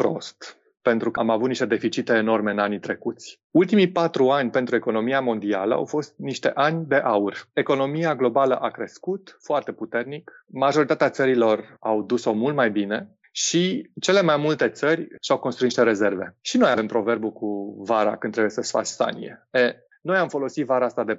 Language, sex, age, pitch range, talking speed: Romanian, male, 30-49, 110-145 Hz, 175 wpm